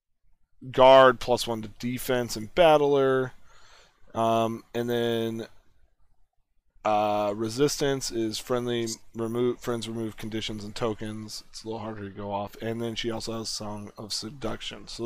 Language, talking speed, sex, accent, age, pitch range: English, 145 wpm, male, American, 20-39, 110-135 Hz